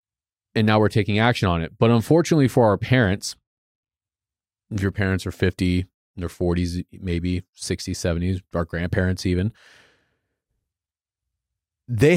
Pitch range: 90-120 Hz